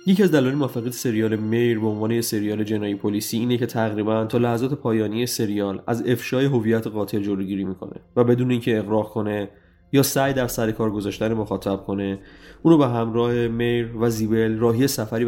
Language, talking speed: Persian, 175 wpm